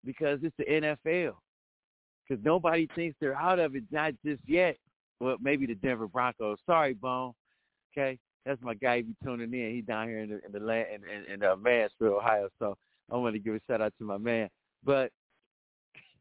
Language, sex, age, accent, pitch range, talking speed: English, male, 50-69, American, 135-195 Hz, 205 wpm